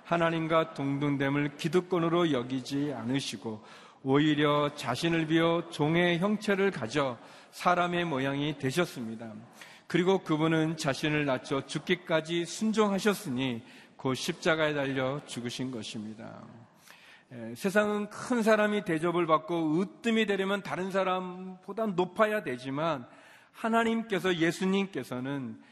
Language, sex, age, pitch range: Korean, male, 40-59, 130-190 Hz